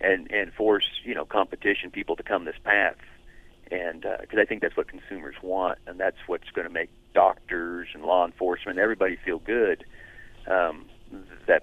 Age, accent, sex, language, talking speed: 40-59, American, male, English, 185 wpm